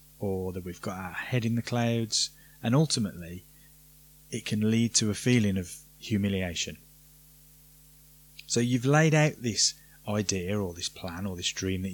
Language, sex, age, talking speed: English, male, 20-39, 160 wpm